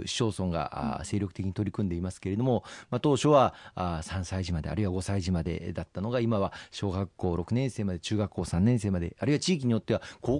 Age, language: 40-59, Japanese